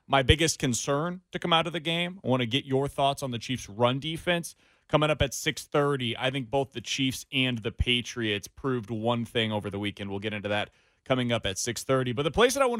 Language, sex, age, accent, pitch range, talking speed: English, male, 30-49, American, 125-180 Hz, 245 wpm